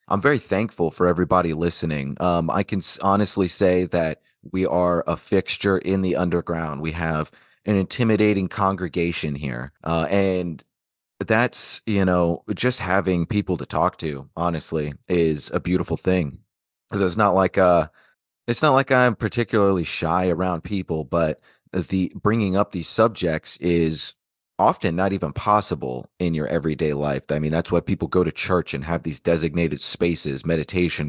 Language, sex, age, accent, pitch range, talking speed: English, male, 30-49, American, 80-100 Hz, 160 wpm